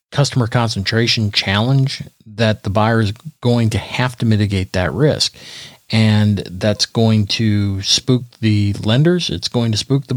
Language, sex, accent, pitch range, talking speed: English, male, American, 105-125 Hz, 155 wpm